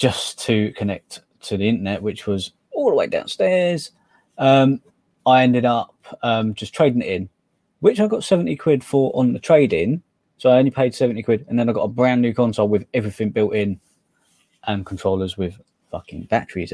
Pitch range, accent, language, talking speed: 100-125 Hz, British, English, 195 wpm